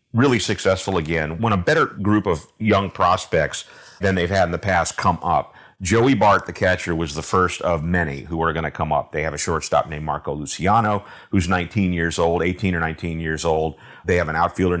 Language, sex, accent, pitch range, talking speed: English, male, American, 85-100 Hz, 215 wpm